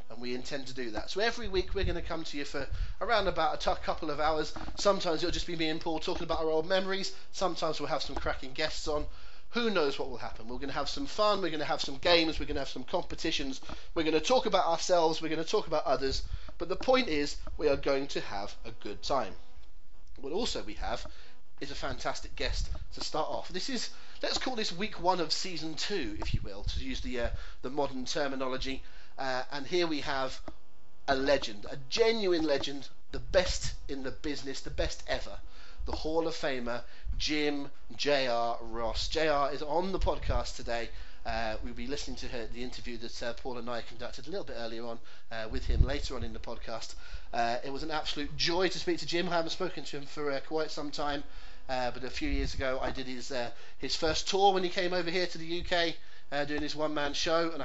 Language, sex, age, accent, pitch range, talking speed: English, male, 30-49, British, 125-170 Hz, 230 wpm